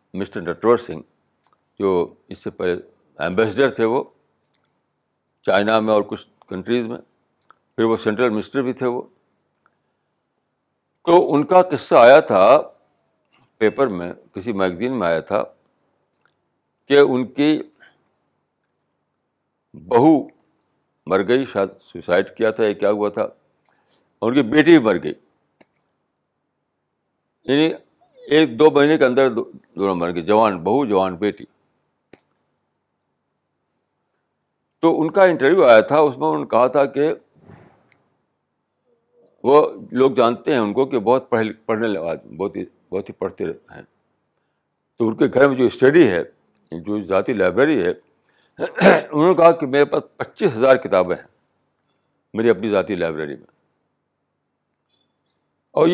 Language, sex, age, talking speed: Urdu, male, 60-79, 135 wpm